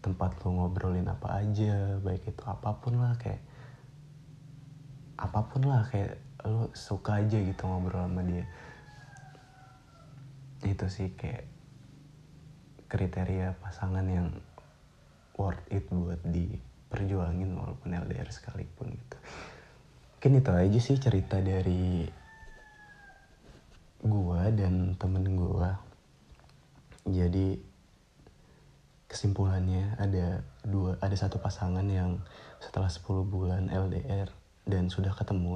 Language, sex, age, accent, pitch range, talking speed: Indonesian, male, 20-39, native, 90-105 Hz, 100 wpm